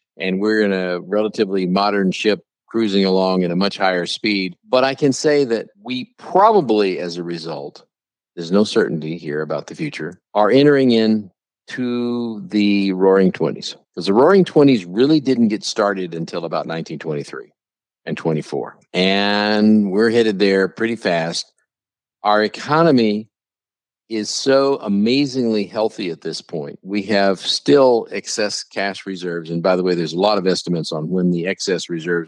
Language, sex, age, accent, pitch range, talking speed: English, male, 50-69, American, 95-130 Hz, 160 wpm